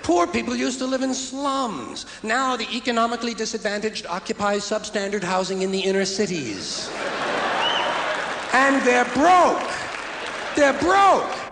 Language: English